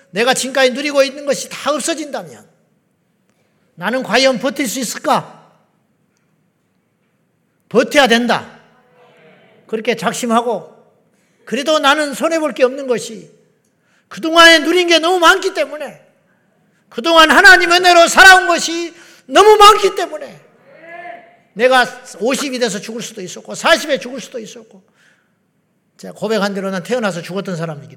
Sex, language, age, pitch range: male, Korean, 40-59, 195-270 Hz